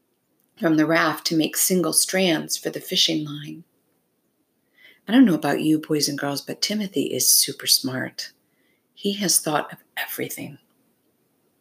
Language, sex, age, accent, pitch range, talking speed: English, female, 50-69, American, 160-195 Hz, 150 wpm